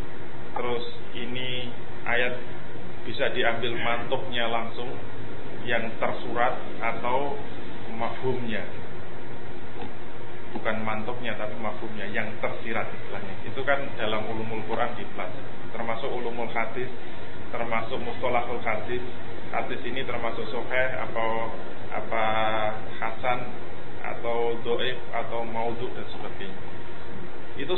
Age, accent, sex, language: 20-39, native, male, Indonesian